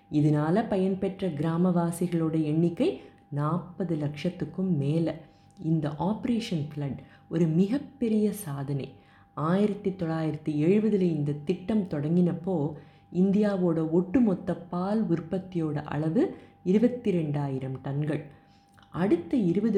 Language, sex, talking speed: Tamil, female, 85 wpm